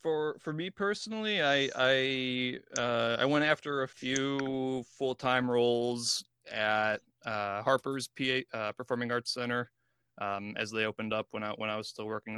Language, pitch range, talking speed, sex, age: English, 105-125 Hz, 170 wpm, male, 20-39